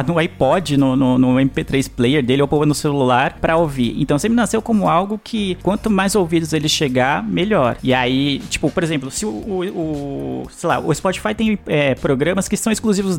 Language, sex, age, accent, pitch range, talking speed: Portuguese, male, 20-39, Brazilian, 135-185 Hz, 200 wpm